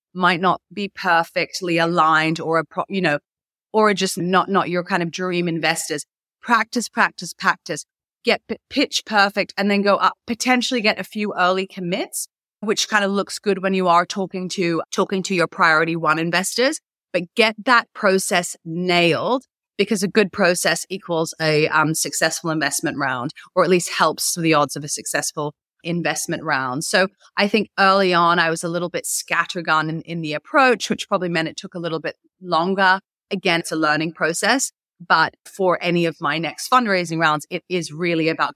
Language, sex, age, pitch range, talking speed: English, female, 30-49, 165-195 Hz, 185 wpm